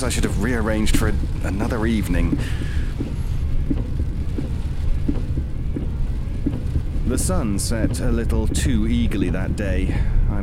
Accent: British